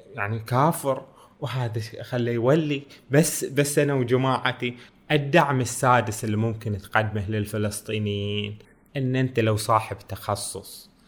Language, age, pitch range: Arabic, 20-39, 115-145 Hz